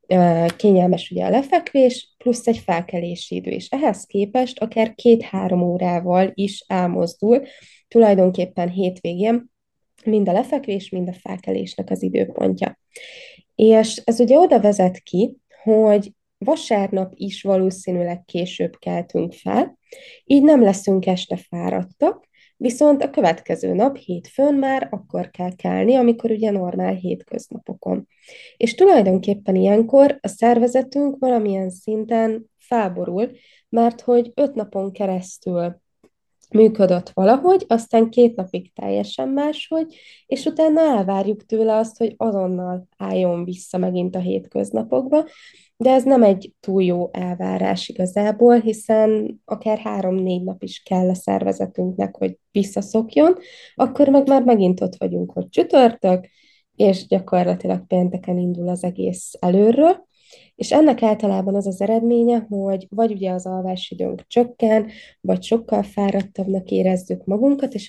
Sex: female